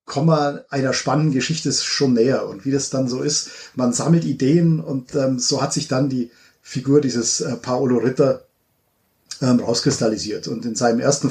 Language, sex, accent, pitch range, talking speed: German, male, German, 125-150 Hz, 165 wpm